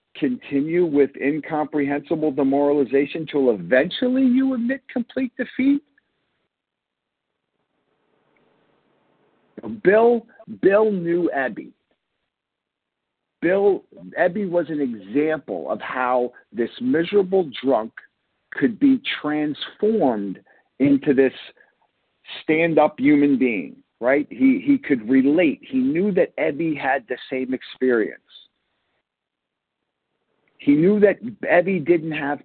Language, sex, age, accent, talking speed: English, male, 50-69, American, 95 wpm